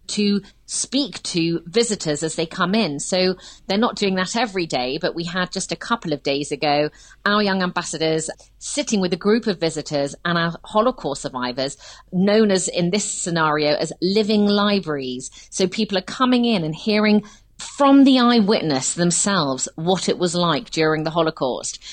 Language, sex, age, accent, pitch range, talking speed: English, female, 40-59, British, 160-205 Hz, 170 wpm